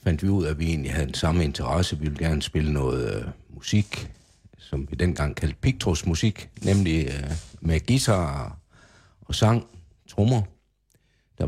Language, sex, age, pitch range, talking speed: Danish, male, 60-79, 75-100 Hz, 155 wpm